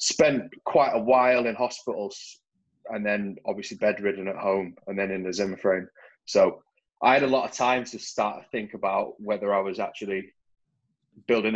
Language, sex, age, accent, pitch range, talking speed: English, male, 20-39, British, 95-120 Hz, 180 wpm